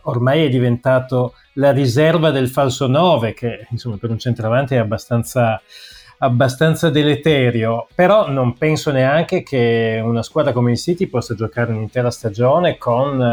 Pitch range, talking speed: 120-145 Hz, 145 wpm